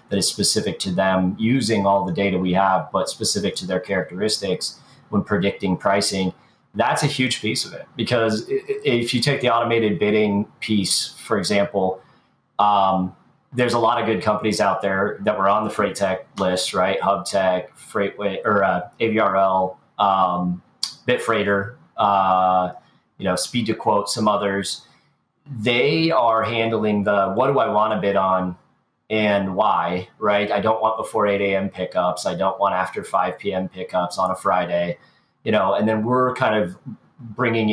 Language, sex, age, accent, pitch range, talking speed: English, male, 30-49, American, 95-115 Hz, 165 wpm